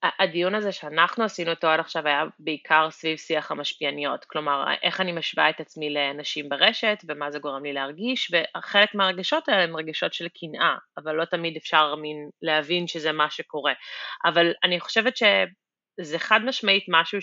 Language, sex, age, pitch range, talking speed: Hebrew, female, 30-49, 155-200 Hz, 165 wpm